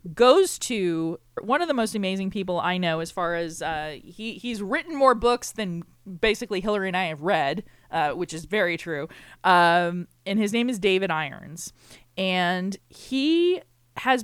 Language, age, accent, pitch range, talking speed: English, 20-39, American, 165-215 Hz, 175 wpm